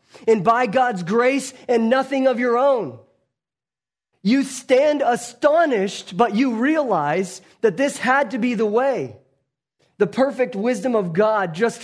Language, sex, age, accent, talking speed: English, male, 30-49, American, 140 wpm